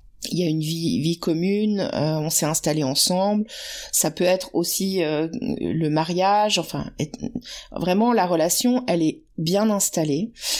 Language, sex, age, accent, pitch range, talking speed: French, female, 30-49, French, 155-195 Hz, 160 wpm